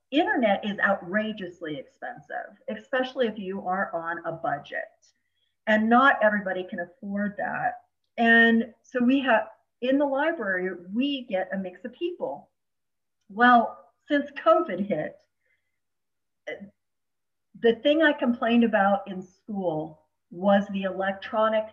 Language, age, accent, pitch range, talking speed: English, 50-69, American, 180-240 Hz, 120 wpm